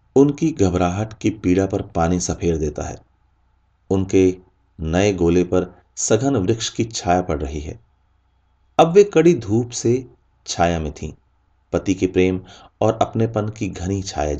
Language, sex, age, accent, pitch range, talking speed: Hindi, male, 30-49, native, 85-120 Hz, 110 wpm